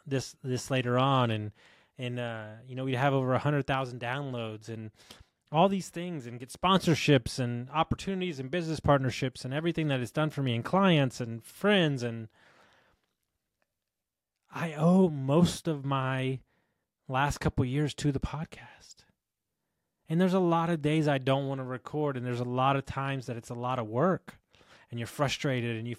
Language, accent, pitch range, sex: English, American, 120-140 Hz, male